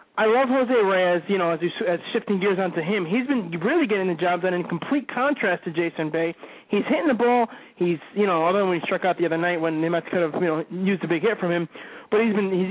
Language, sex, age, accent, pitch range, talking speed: English, male, 20-39, American, 175-220 Hz, 285 wpm